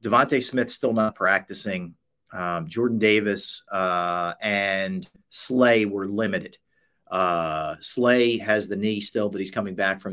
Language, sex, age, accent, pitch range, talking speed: English, male, 40-59, American, 95-130 Hz, 140 wpm